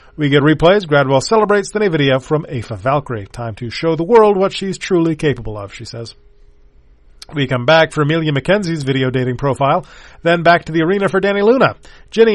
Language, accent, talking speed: English, American, 200 wpm